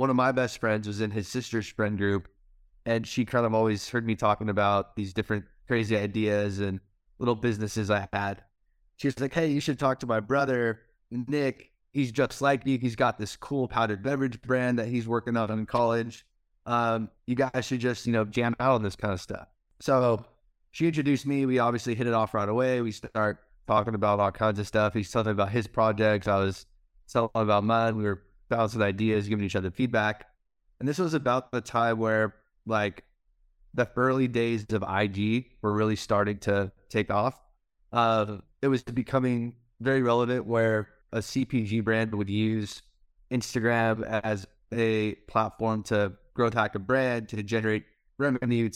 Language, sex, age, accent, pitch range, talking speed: English, male, 20-39, American, 105-125 Hz, 185 wpm